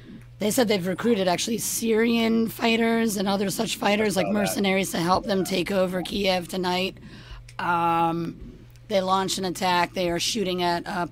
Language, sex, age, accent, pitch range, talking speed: English, female, 40-59, American, 165-195 Hz, 160 wpm